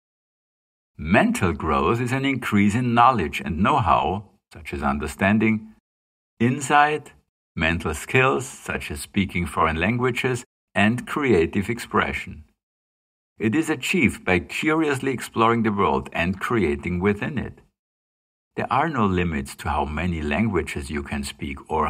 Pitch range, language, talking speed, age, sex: 80-115 Hz, English, 130 wpm, 60-79, male